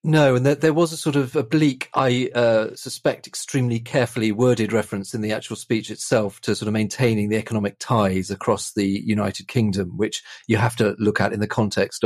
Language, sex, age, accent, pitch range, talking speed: English, male, 40-59, British, 100-120 Hz, 210 wpm